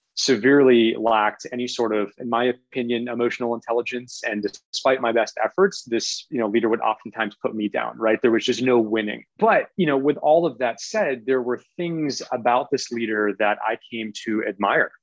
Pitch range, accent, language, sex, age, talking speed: 105-125 Hz, American, English, male, 30-49, 195 wpm